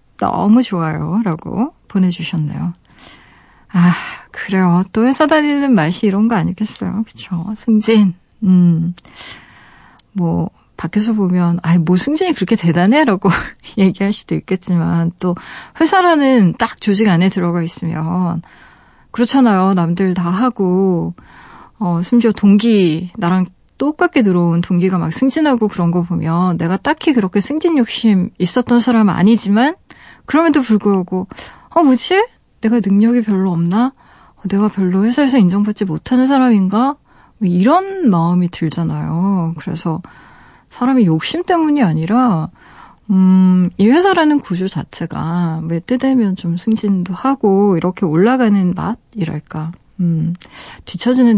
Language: Korean